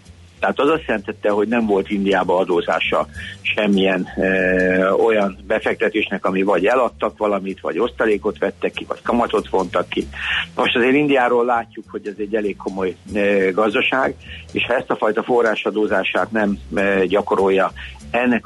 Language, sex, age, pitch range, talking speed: Hungarian, male, 60-79, 95-110 Hz, 150 wpm